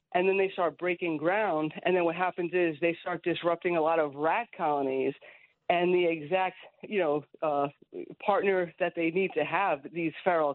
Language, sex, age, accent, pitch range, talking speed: English, female, 40-59, American, 160-190 Hz, 190 wpm